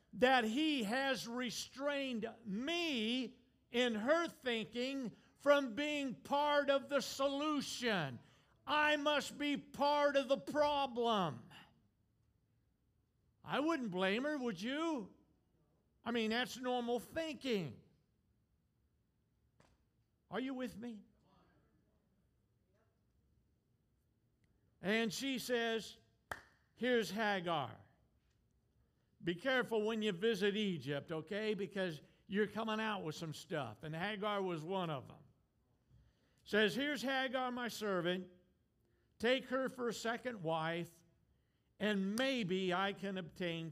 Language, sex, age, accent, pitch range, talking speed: English, male, 50-69, American, 175-255 Hz, 105 wpm